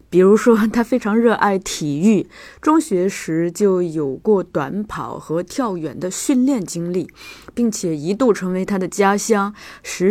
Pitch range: 170-235 Hz